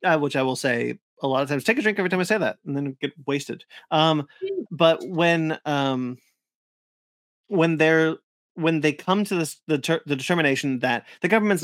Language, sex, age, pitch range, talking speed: English, male, 30-49, 130-165 Hz, 200 wpm